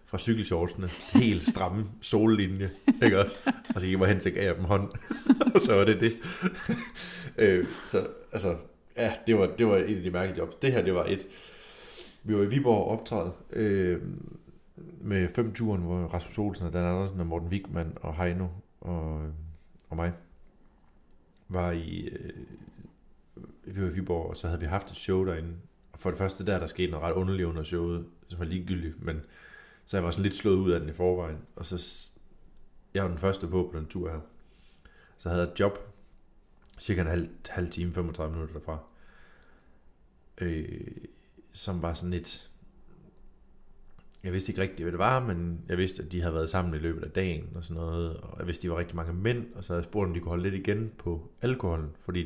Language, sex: Danish, male